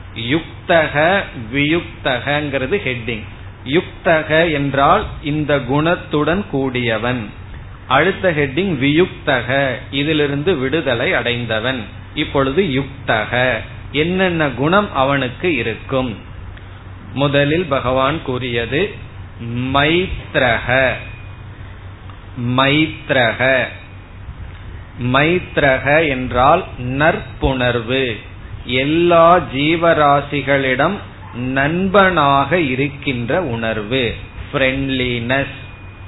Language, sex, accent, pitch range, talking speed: Tamil, male, native, 110-155 Hz, 45 wpm